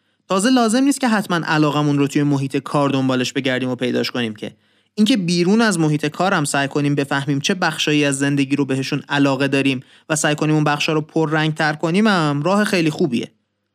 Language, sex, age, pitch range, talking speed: Persian, male, 30-49, 135-185 Hz, 205 wpm